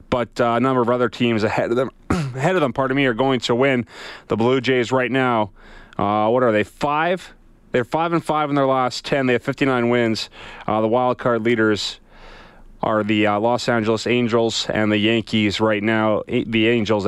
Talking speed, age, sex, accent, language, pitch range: 210 wpm, 30-49, male, American, English, 105-135 Hz